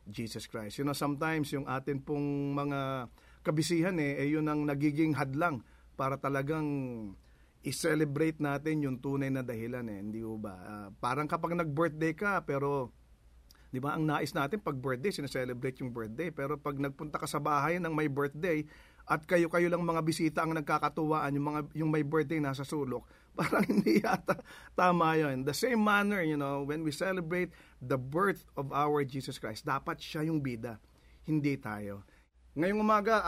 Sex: male